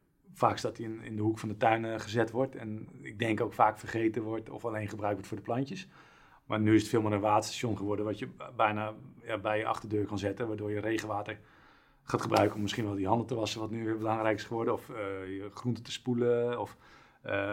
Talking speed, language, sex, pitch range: 235 wpm, Dutch, male, 105-115 Hz